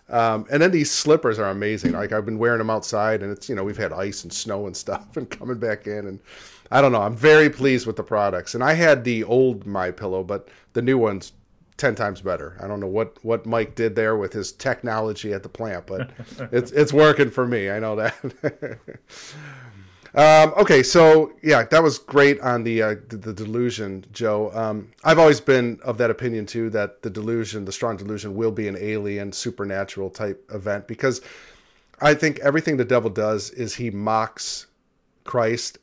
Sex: male